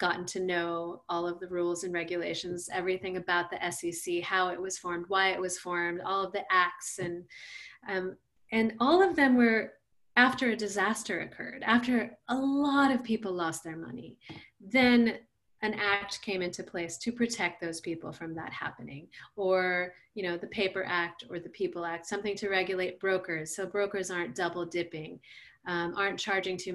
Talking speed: 180 wpm